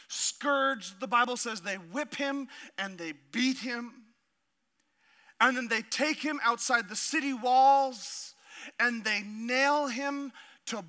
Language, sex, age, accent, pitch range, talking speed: English, male, 40-59, American, 210-275 Hz, 140 wpm